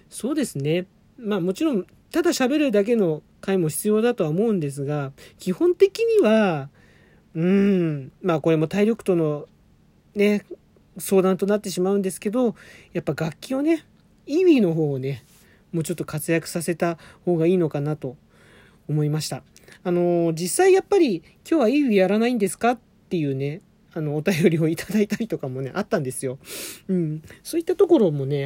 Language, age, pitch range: Japanese, 40-59, 150-210 Hz